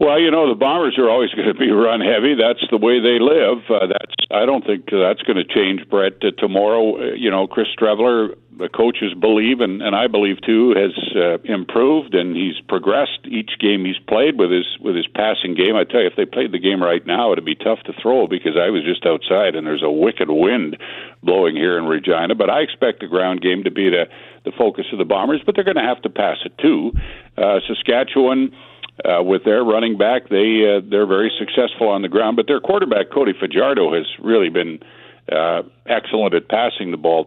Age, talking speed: 60-79, 225 wpm